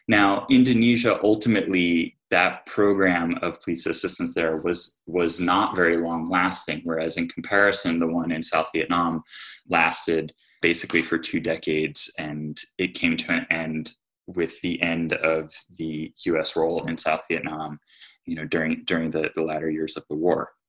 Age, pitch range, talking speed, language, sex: 20-39, 80-95 Hz, 160 wpm, English, male